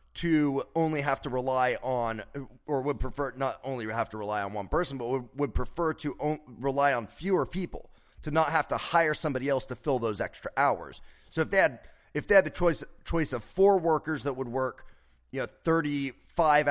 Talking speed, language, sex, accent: 210 wpm, English, male, American